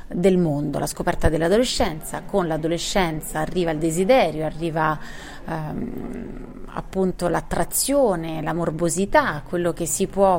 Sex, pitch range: female, 165-195 Hz